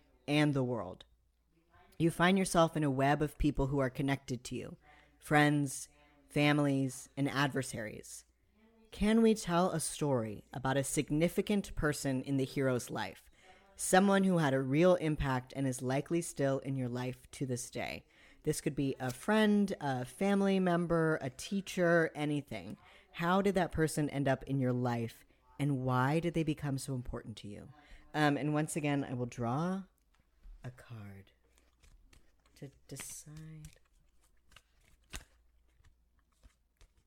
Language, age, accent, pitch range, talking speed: English, 40-59, American, 125-165 Hz, 145 wpm